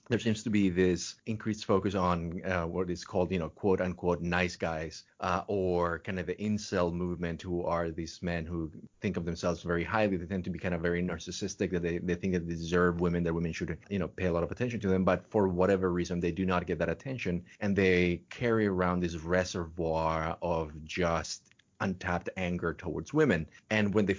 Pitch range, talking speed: 85-100 Hz, 220 wpm